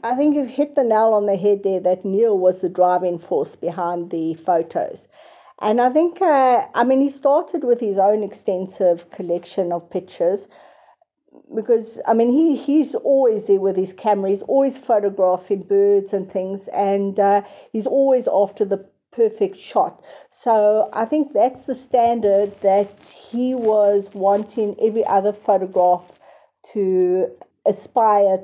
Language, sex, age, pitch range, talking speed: English, female, 50-69, 195-235 Hz, 155 wpm